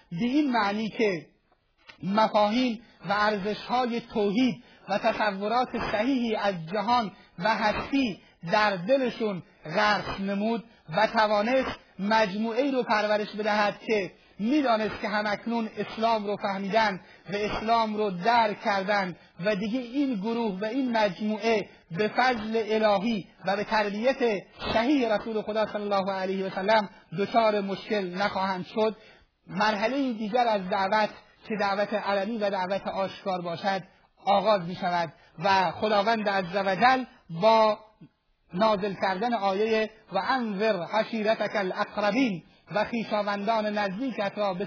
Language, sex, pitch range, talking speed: Persian, male, 195-220 Hz, 125 wpm